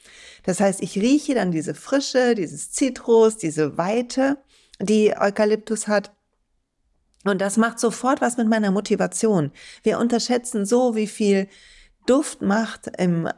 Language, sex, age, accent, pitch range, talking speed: German, female, 40-59, German, 175-220 Hz, 135 wpm